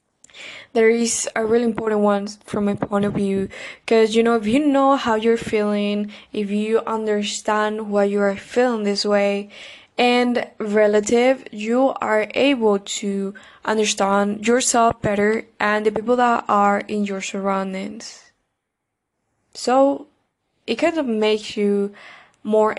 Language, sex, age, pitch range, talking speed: English, female, 10-29, 205-235 Hz, 140 wpm